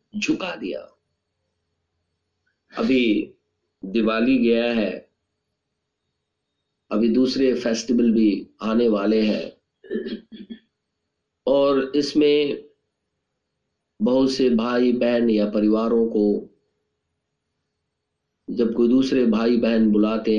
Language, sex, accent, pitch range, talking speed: Hindi, male, native, 110-165 Hz, 80 wpm